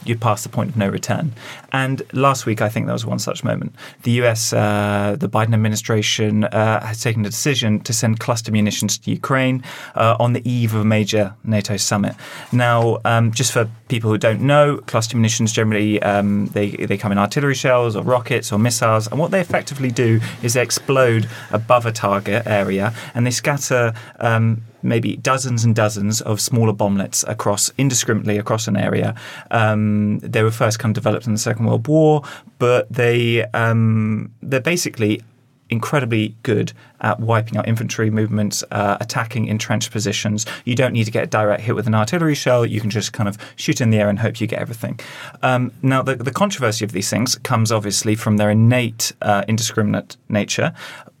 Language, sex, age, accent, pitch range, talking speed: English, male, 30-49, British, 105-125 Hz, 190 wpm